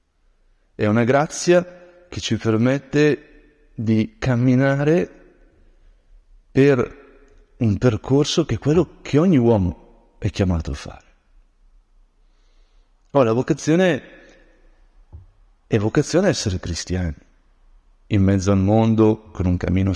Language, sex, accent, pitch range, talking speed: Italian, male, native, 95-130 Hz, 100 wpm